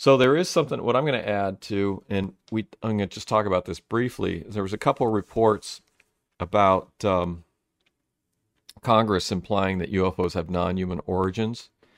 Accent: American